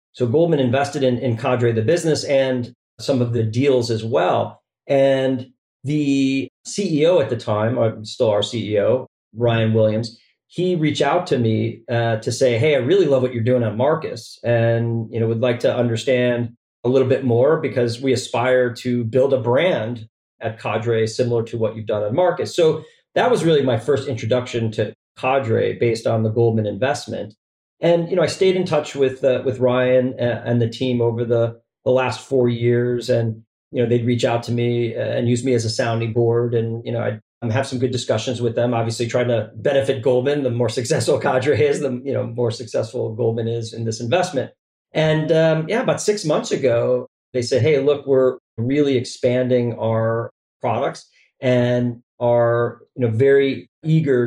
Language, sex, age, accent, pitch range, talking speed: English, male, 40-59, American, 115-135 Hz, 185 wpm